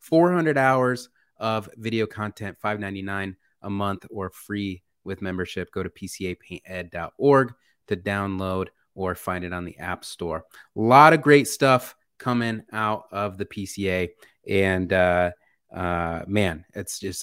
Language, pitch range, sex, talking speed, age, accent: English, 90-110 Hz, male, 140 wpm, 30-49, American